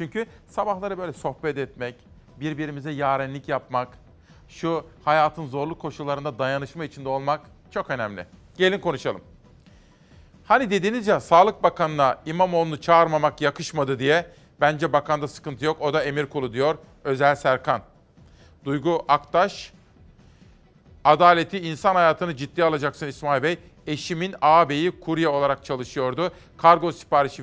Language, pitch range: Turkish, 135-165 Hz